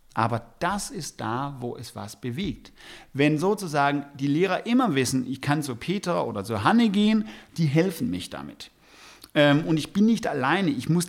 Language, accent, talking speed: English, German, 180 wpm